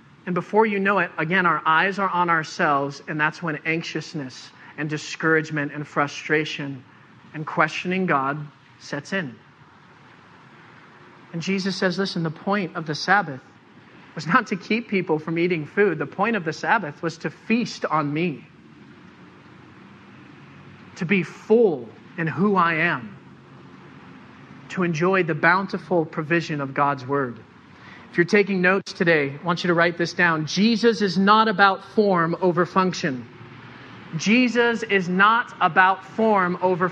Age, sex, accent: 40-59, male, American